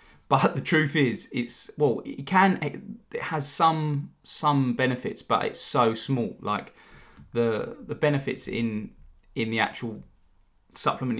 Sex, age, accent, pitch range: male, 20-39, British, 105-130 Hz